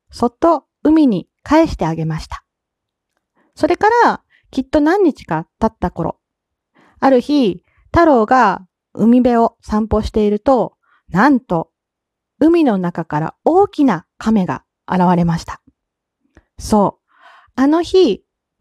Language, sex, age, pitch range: Japanese, female, 40-59, 190-310 Hz